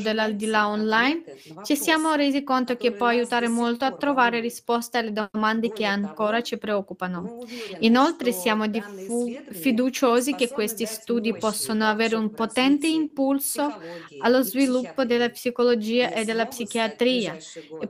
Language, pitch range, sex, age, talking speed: Italian, 205-245 Hz, female, 20-39, 130 wpm